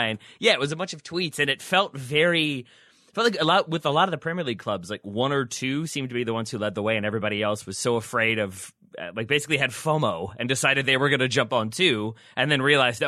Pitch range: 115-145 Hz